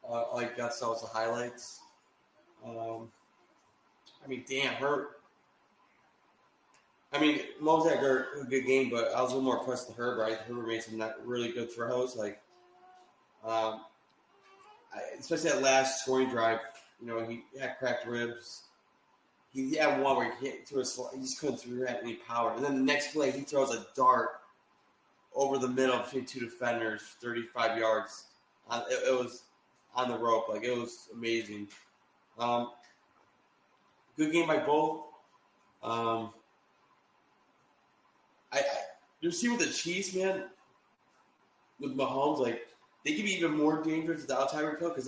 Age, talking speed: 20-39, 160 wpm